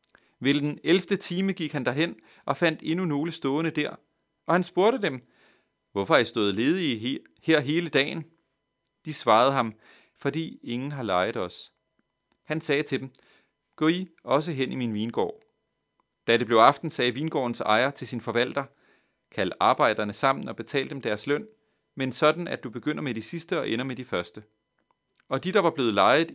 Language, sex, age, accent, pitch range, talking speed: Danish, male, 30-49, native, 120-165 Hz, 185 wpm